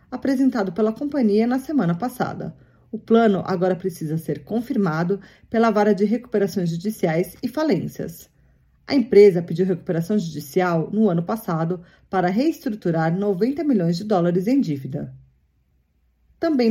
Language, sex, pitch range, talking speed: Portuguese, female, 175-235 Hz, 130 wpm